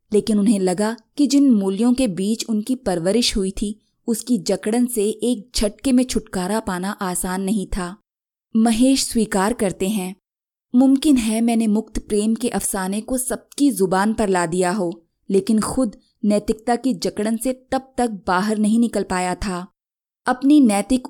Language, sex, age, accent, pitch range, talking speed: Hindi, female, 20-39, native, 195-235 Hz, 160 wpm